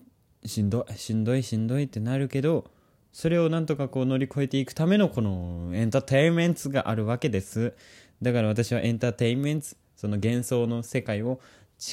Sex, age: male, 20-39